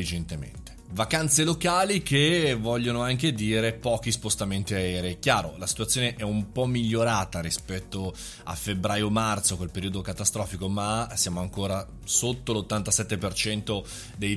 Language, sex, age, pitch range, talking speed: Italian, male, 20-39, 95-130 Hz, 115 wpm